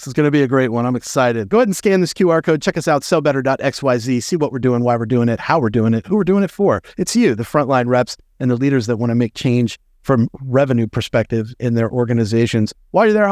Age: 30-49